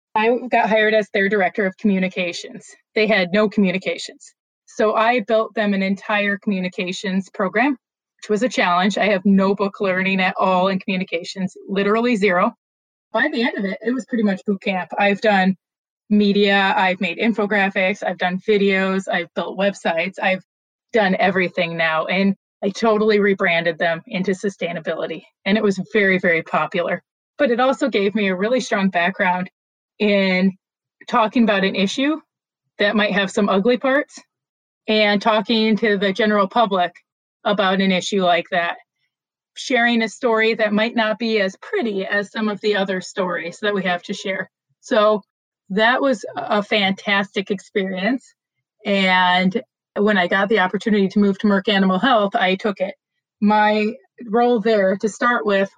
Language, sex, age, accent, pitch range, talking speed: English, female, 20-39, American, 190-220 Hz, 165 wpm